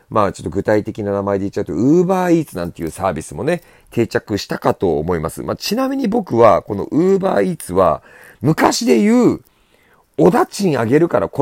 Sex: male